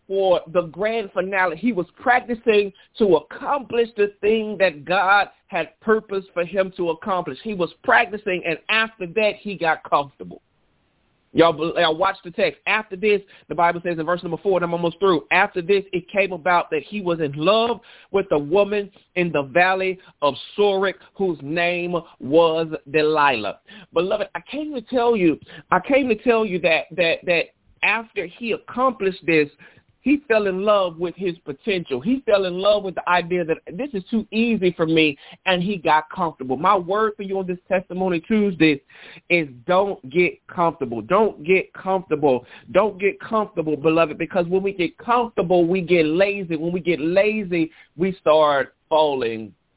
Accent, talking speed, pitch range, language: American, 175 wpm, 165-205 Hz, English